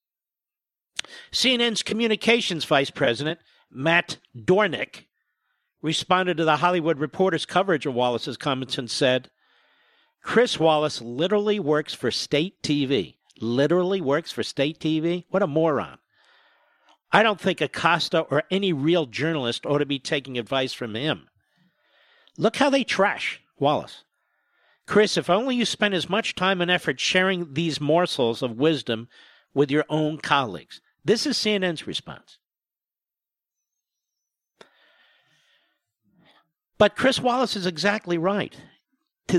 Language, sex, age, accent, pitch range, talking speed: English, male, 50-69, American, 150-225 Hz, 125 wpm